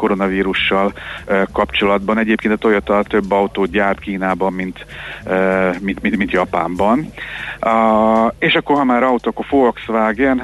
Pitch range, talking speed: 95-110 Hz, 140 wpm